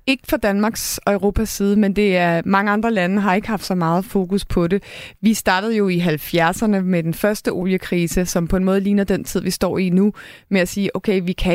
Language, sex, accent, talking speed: Danish, female, native, 240 wpm